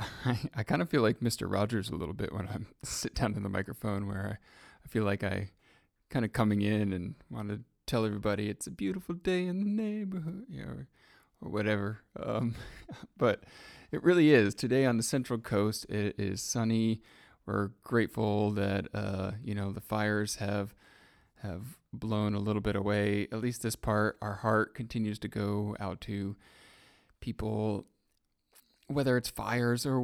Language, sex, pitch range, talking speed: English, male, 100-110 Hz, 175 wpm